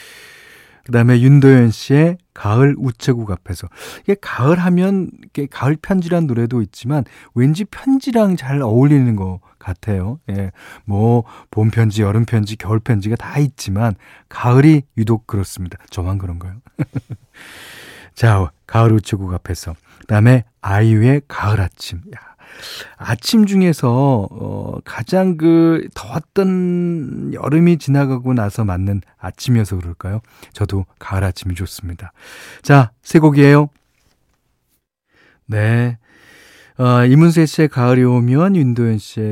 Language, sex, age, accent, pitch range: Korean, male, 40-59, native, 100-140 Hz